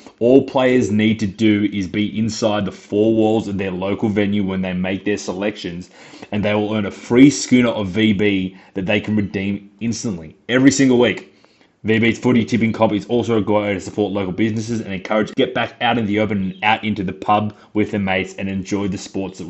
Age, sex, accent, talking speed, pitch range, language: 20-39, male, Australian, 220 wpm, 100-115 Hz, English